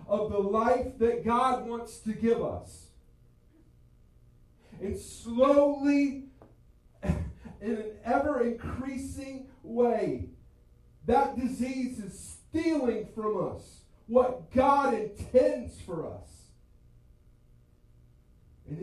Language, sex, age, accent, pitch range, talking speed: English, male, 40-59, American, 160-250 Hz, 90 wpm